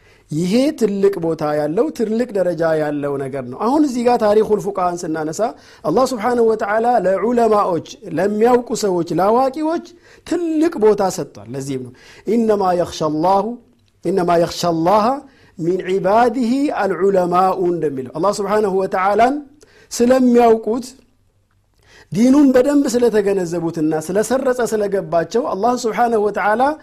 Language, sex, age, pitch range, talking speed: Amharic, male, 50-69, 180-250 Hz, 115 wpm